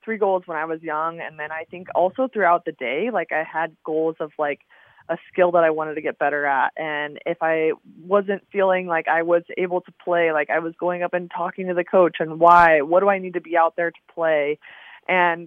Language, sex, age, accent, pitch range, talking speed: English, female, 20-39, American, 165-185 Hz, 245 wpm